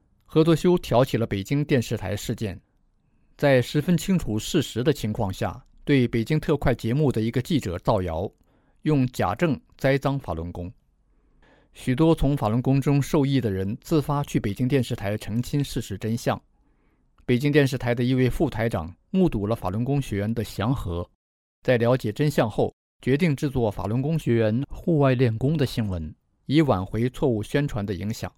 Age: 50-69